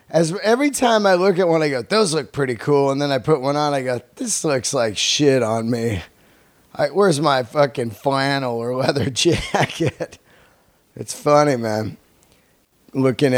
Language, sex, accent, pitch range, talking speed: English, male, American, 120-145 Hz, 175 wpm